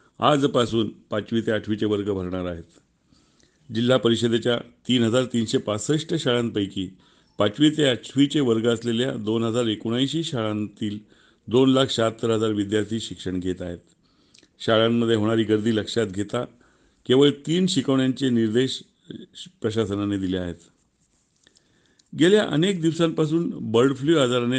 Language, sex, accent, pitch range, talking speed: Marathi, male, native, 105-130 Hz, 105 wpm